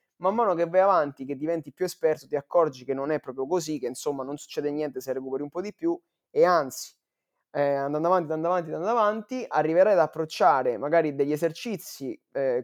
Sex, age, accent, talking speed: male, 20-39, native, 205 wpm